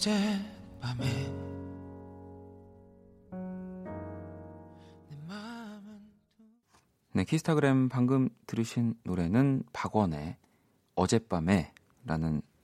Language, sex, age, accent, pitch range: Korean, male, 40-59, native, 90-135 Hz